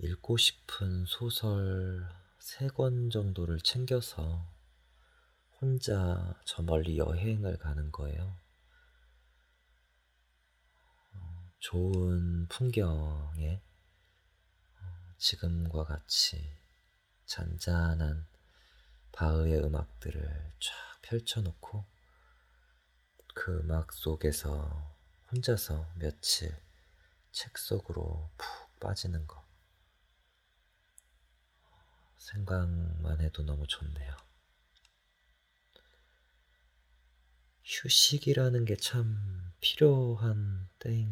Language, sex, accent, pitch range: Korean, male, native, 75-95 Hz